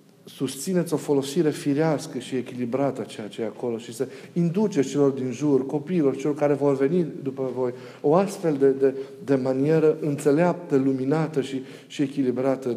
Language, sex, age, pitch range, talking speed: Romanian, male, 40-59, 125-150 Hz, 160 wpm